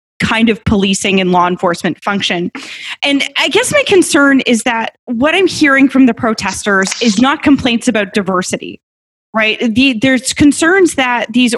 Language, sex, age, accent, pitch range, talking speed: English, female, 20-39, American, 205-260 Hz, 160 wpm